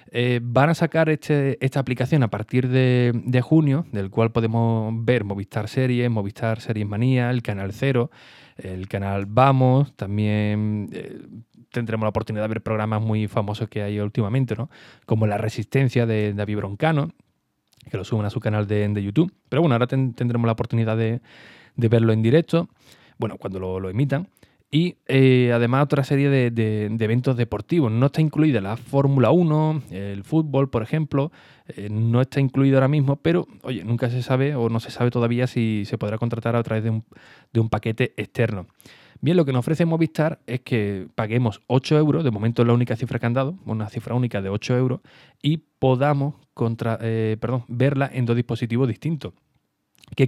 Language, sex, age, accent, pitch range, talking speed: Spanish, male, 20-39, Spanish, 110-135 Hz, 190 wpm